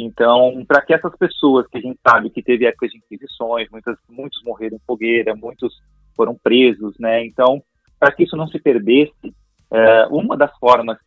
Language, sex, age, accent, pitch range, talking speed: Portuguese, male, 30-49, Brazilian, 115-135 Hz, 180 wpm